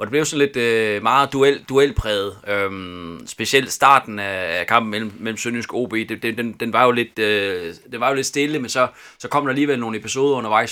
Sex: male